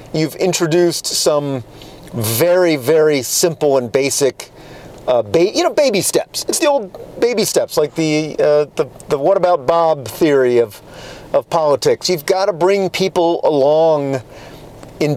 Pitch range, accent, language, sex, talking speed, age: 140-205 Hz, American, English, male, 150 wpm, 40-59